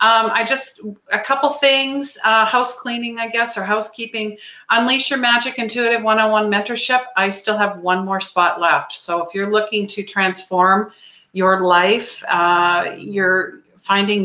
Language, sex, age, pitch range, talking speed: English, female, 50-69, 185-225 Hz, 155 wpm